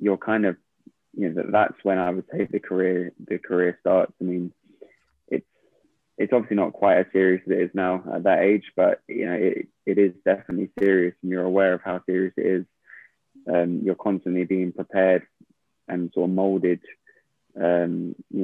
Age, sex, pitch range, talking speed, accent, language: 20-39, male, 90-95 Hz, 190 wpm, British, English